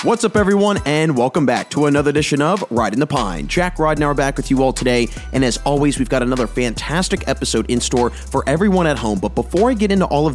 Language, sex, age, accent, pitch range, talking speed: English, male, 30-49, American, 130-160 Hz, 245 wpm